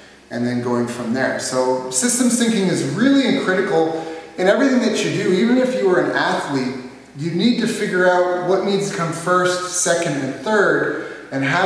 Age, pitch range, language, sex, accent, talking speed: 30-49, 140-190 Hz, English, male, American, 190 wpm